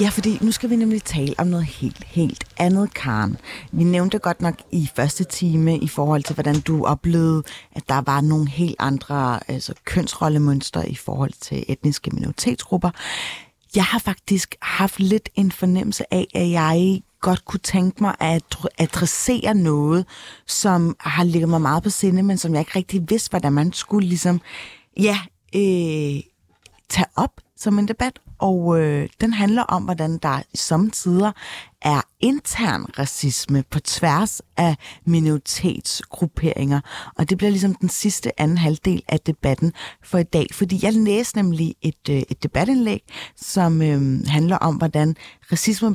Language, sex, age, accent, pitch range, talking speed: Danish, female, 30-49, native, 150-205 Hz, 160 wpm